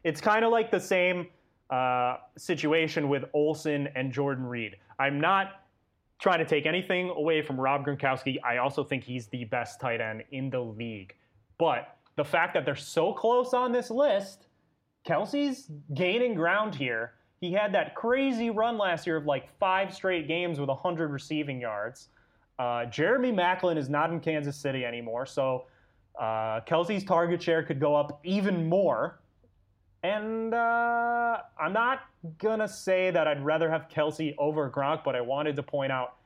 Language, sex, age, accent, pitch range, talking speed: English, male, 20-39, American, 125-180 Hz, 170 wpm